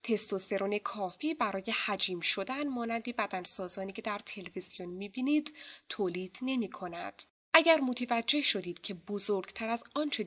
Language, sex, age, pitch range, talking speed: Persian, female, 10-29, 185-255 Hz, 125 wpm